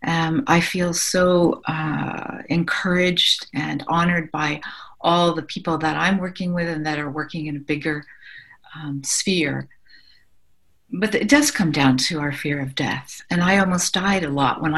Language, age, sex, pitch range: English, 50-69, female, 155-195 Hz